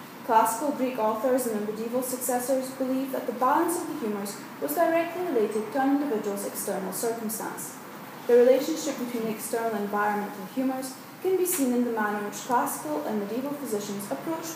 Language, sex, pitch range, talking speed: English, female, 220-270 Hz, 175 wpm